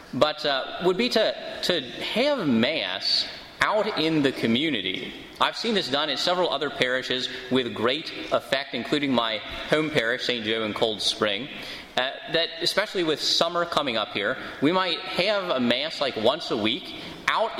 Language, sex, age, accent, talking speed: English, male, 30-49, American, 170 wpm